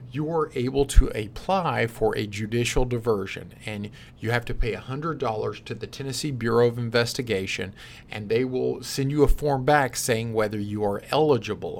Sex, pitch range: male, 110-135 Hz